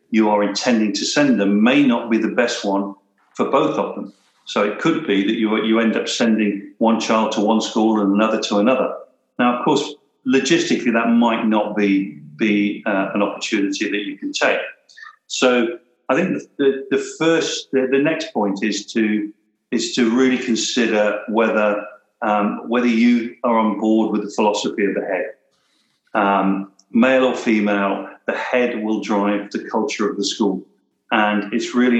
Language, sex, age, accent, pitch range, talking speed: English, male, 50-69, British, 105-135 Hz, 180 wpm